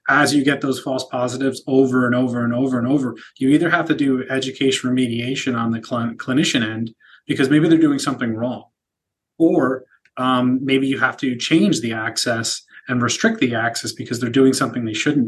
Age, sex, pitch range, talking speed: 30-49, male, 120-135 Hz, 195 wpm